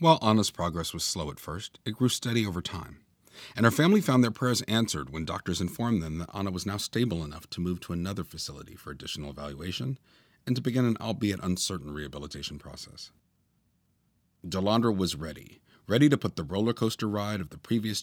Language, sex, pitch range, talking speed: English, male, 85-115 Hz, 195 wpm